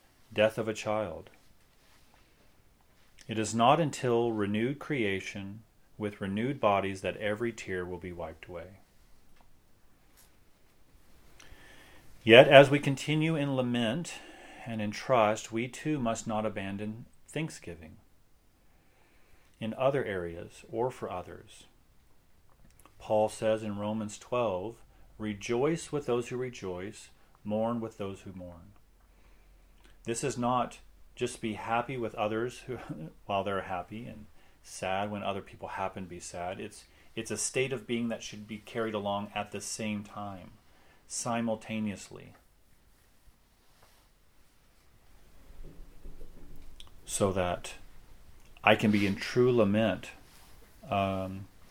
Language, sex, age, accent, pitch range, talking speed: English, male, 40-59, American, 90-115 Hz, 120 wpm